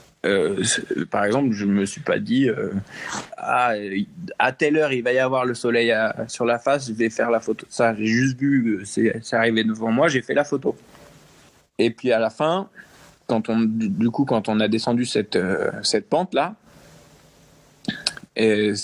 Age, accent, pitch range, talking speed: 20-39, French, 110-135 Hz, 195 wpm